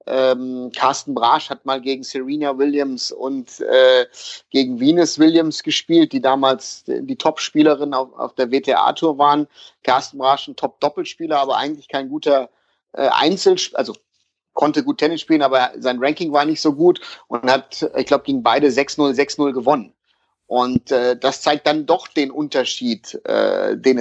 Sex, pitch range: male, 140-180 Hz